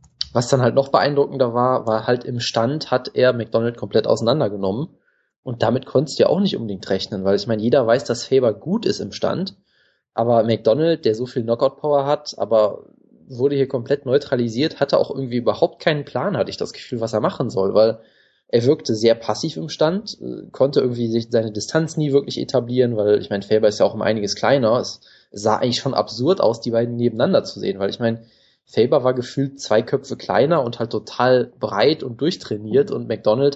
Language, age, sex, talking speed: German, 20-39, male, 205 wpm